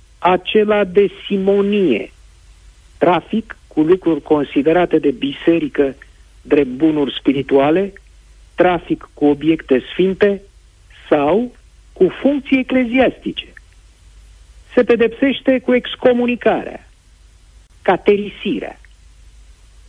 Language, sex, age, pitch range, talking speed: Romanian, male, 50-69, 135-220 Hz, 75 wpm